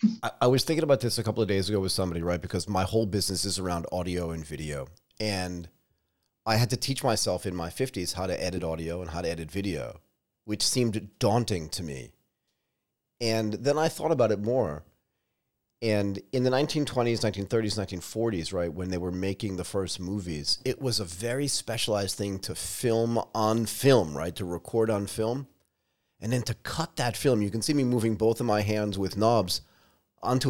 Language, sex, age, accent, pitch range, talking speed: English, male, 30-49, American, 95-125 Hz, 195 wpm